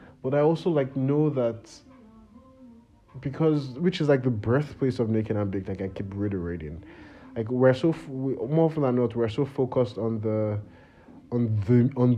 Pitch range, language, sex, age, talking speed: 110-145 Hz, English, male, 30-49, 170 wpm